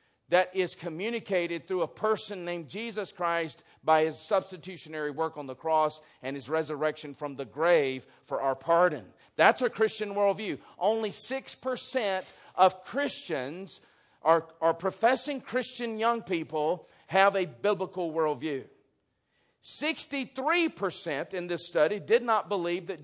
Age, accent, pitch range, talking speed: 50-69, American, 135-195 Hz, 135 wpm